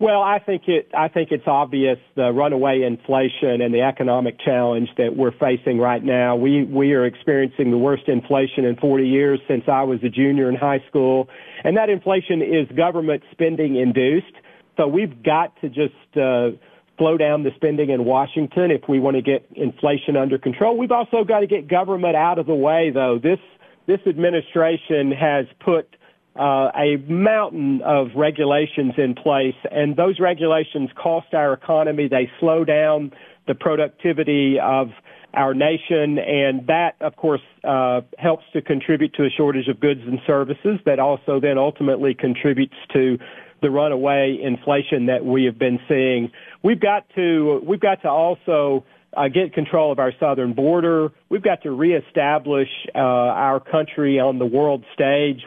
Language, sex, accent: English, male, American